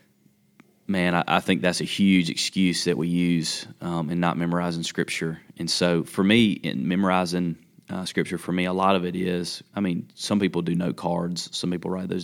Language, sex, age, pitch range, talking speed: English, male, 30-49, 85-90 Hz, 205 wpm